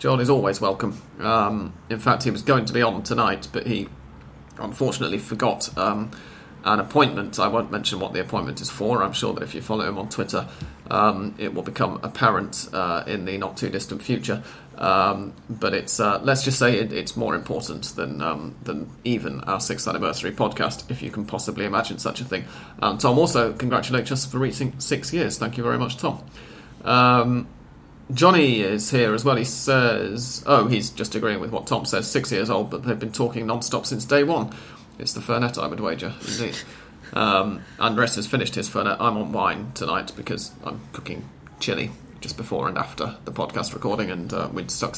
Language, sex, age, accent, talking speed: English, male, 30-49, British, 200 wpm